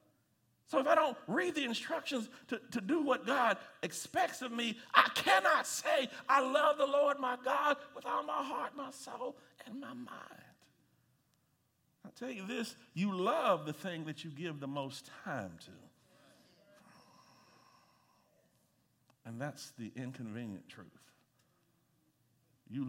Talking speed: 140 wpm